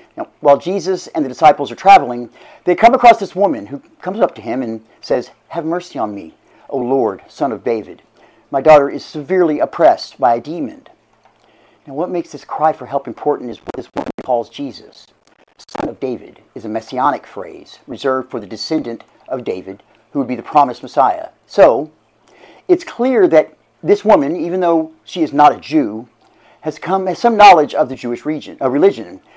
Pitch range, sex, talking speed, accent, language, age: 130-180 Hz, male, 195 wpm, American, English, 50-69